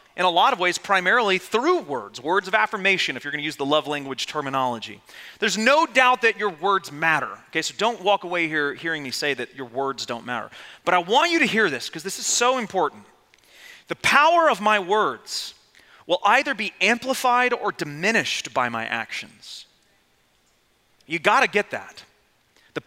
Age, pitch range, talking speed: 30-49, 175-245 Hz, 190 wpm